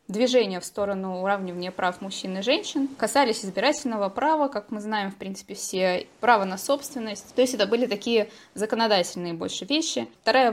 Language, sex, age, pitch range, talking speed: Russian, female, 20-39, 185-240 Hz, 165 wpm